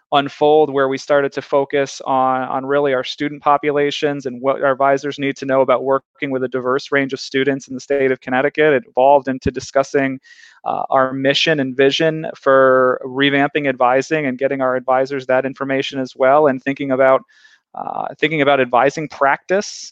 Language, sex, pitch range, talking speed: English, male, 130-150 Hz, 180 wpm